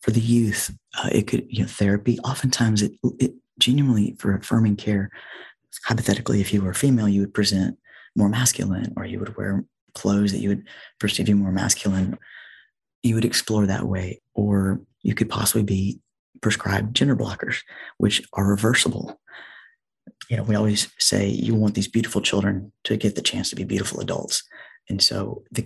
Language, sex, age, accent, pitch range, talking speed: English, male, 30-49, American, 100-115 Hz, 180 wpm